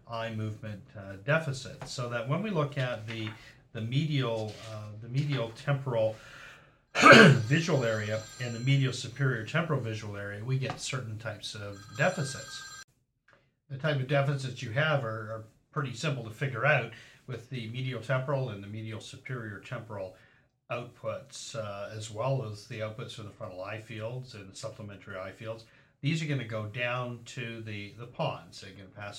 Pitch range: 105-135 Hz